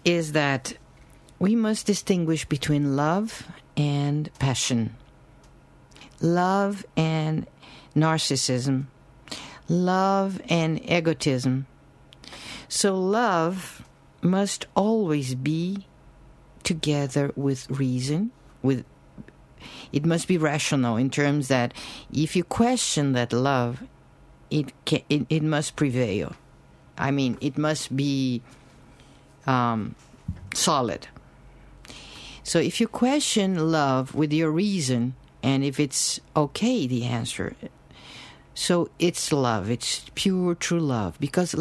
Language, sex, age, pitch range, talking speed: English, female, 50-69, 135-180 Hz, 100 wpm